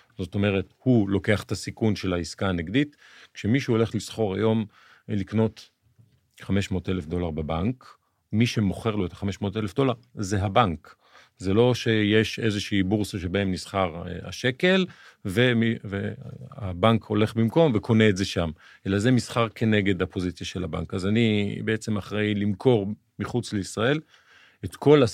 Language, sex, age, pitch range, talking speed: Hebrew, male, 40-59, 90-115 Hz, 140 wpm